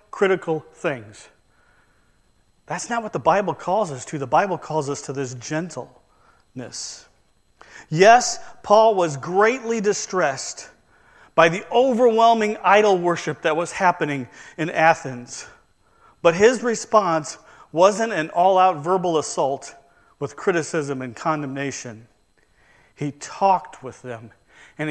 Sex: male